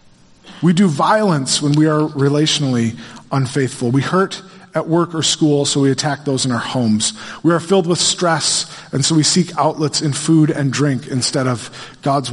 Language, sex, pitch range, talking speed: English, male, 130-180 Hz, 185 wpm